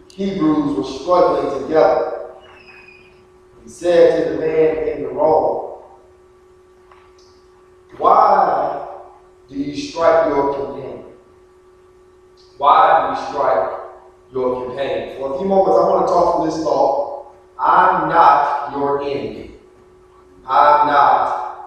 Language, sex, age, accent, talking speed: English, male, 30-49, American, 115 wpm